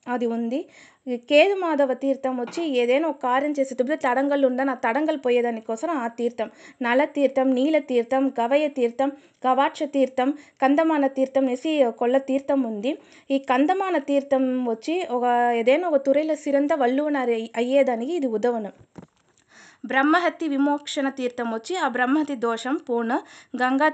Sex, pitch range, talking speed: female, 245-300 Hz, 120 wpm